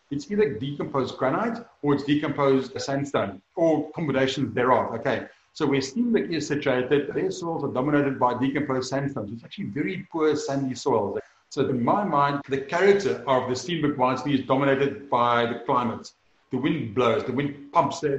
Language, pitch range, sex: English, 130-150 Hz, male